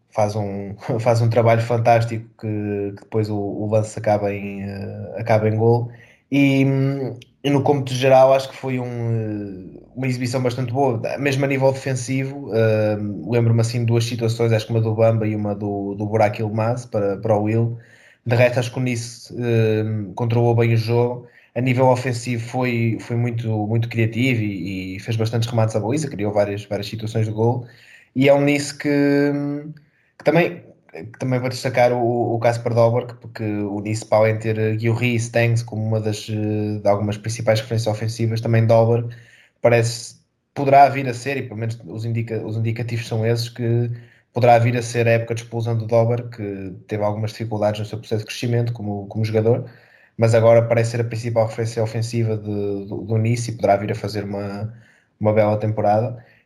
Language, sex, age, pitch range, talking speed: Portuguese, male, 20-39, 110-120 Hz, 190 wpm